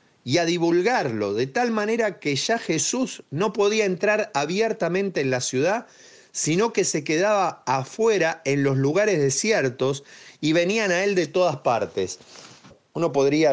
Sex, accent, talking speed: male, Argentinian, 150 wpm